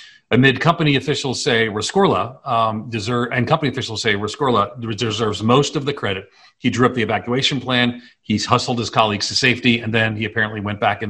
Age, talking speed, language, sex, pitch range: 40-59, 170 wpm, English, male, 110-135 Hz